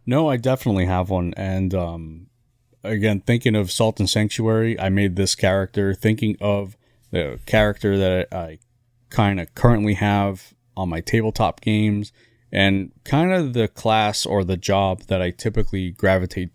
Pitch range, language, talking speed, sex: 95-120 Hz, English, 155 wpm, male